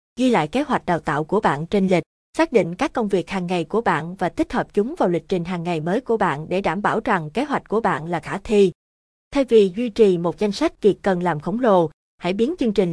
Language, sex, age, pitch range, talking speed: Vietnamese, female, 20-39, 170-220 Hz, 270 wpm